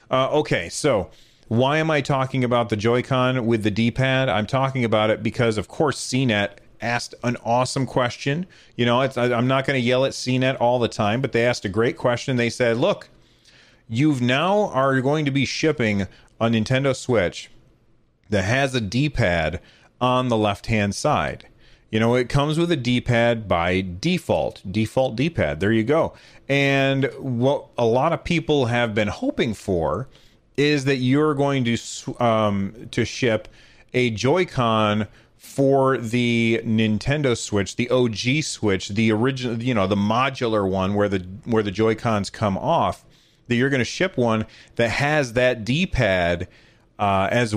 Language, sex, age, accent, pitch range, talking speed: English, male, 30-49, American, 110-135 Hz, 165 wpm